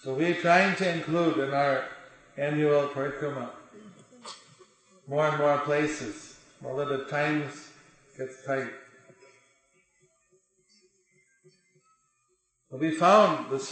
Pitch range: 135-180 Hz